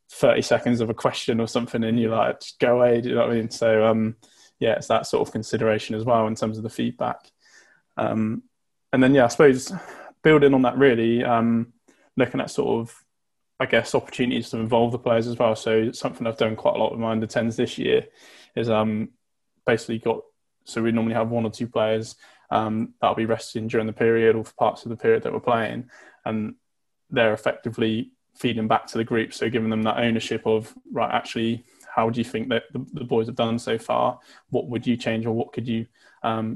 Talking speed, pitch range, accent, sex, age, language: 220 wpm, 110-120 Hz, British, male, 20-39, English